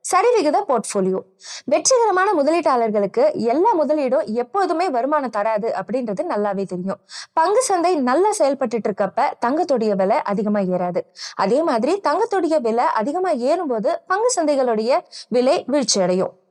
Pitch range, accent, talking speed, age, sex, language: 215-325 Hz, native, 115 wpm, 20-39, female, Tamil